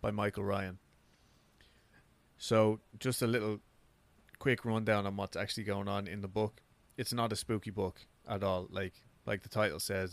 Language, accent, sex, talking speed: English, Irish, male, 170 wpm